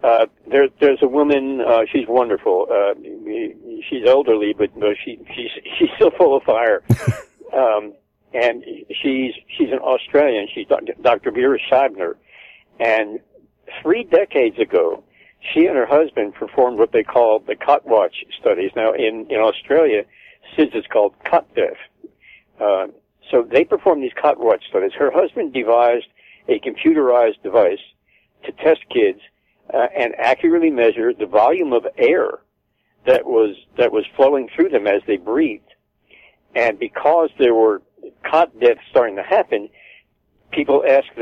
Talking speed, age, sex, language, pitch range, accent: 145 wpm, 60-79, male, English, 330-460 Hz, American